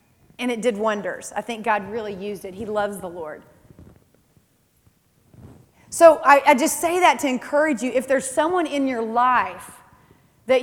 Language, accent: English, American